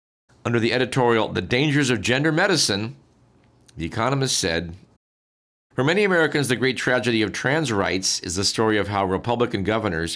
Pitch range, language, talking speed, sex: 95-125 Hz, English, 160 wpm, male